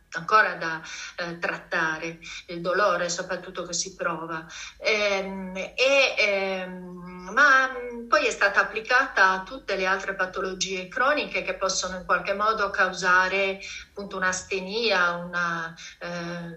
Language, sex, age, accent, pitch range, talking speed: Italian, female, 40-59, native, 180-210 Hz, 105 wpm